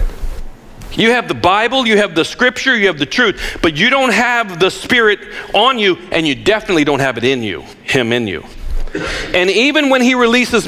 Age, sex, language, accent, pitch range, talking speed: 40-59, male, English, American, 190-265 Hz, 200 wpm